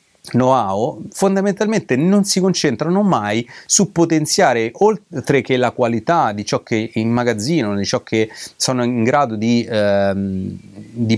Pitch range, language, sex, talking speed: 115-175 Hz, Italian, male, 135 wpm